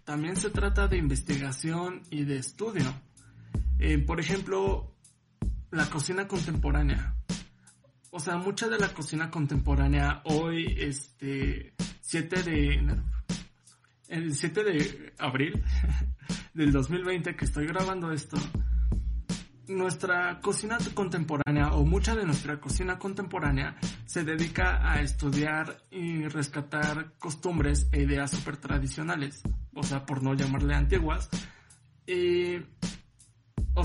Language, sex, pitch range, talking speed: Spanish, male, 130-170 Hz, 110 wpm